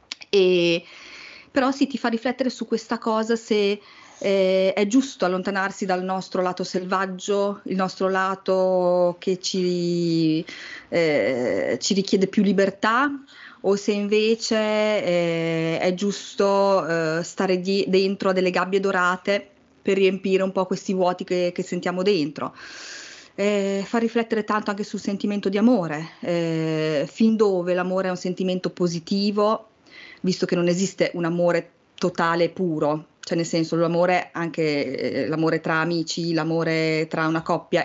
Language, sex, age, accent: Italian, female, 30-49, native